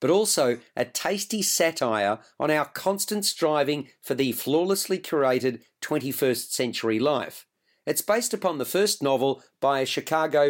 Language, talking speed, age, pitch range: English, 145 wpm, 50-69, 135-185 Hz